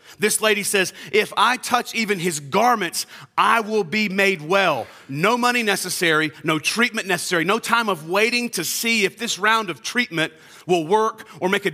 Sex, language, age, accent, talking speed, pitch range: male, English, 40-59, American, 185 wpm, 135-220 Hz